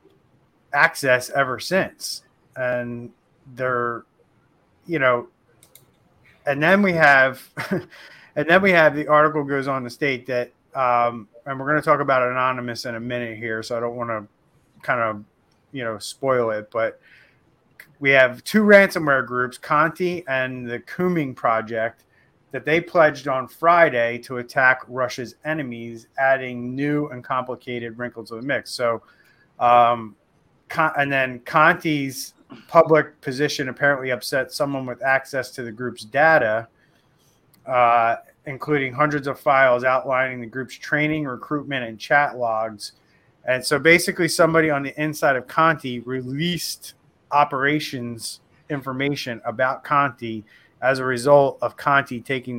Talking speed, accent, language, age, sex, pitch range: 140 wpm, American, English, 30-49, male, 120-145 Hz